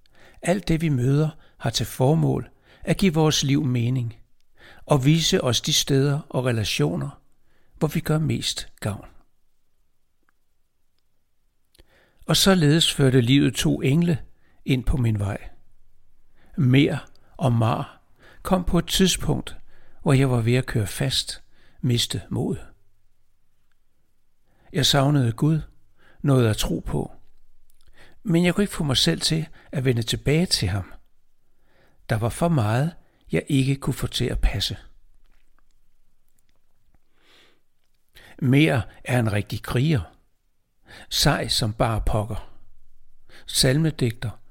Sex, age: male, 60-79